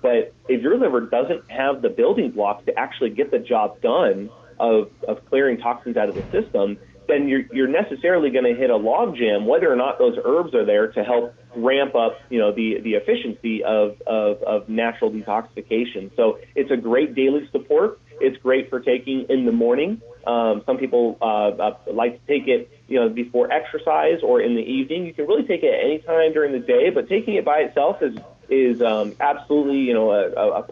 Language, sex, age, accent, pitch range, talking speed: English, male, 30-49, American, 115-180 Hz, 205 wpm